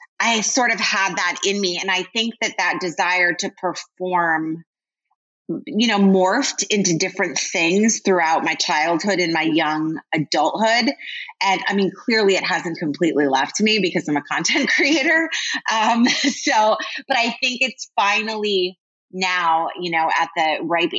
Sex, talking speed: female, 155 wpm